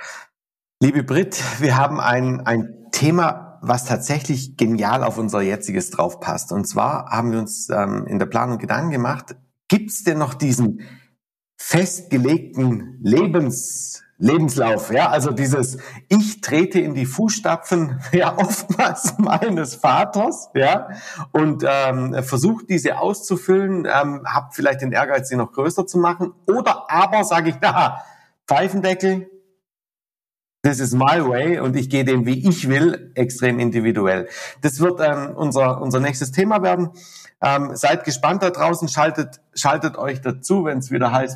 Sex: male